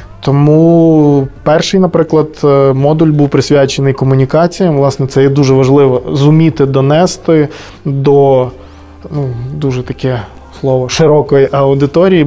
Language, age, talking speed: Ukrainian, 20-39, 105 wpm